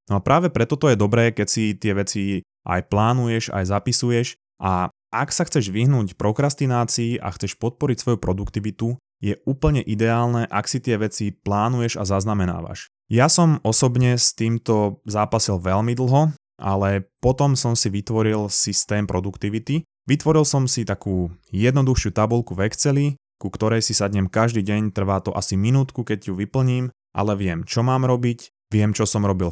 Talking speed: 165 wpm